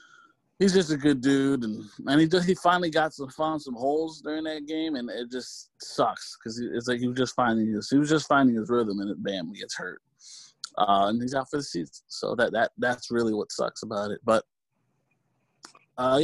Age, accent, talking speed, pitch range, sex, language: 20-39, American, 225 wpm, 115-145 Hz, male, English